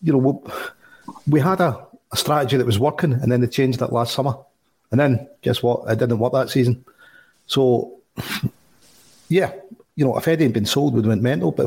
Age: 40-59